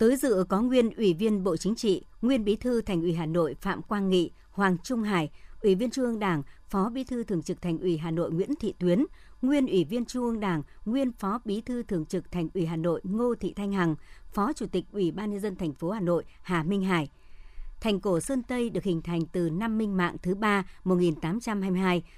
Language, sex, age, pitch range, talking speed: Vietnamese, male, 60-79, 170-215 Hz, 235 wpm